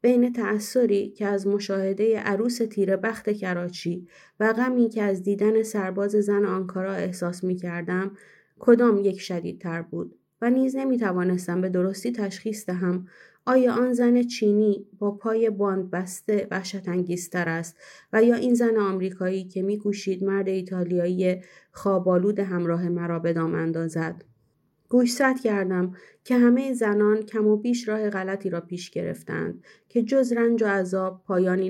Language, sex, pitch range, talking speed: Persian, female, 185-225 Hz, 140 wpm